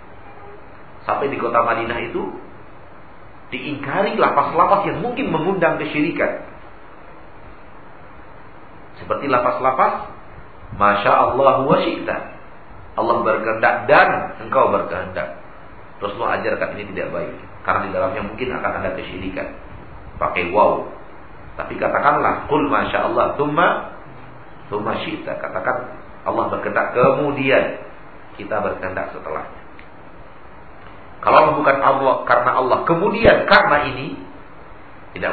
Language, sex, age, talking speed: Malay, male, 50-69, 100 wpm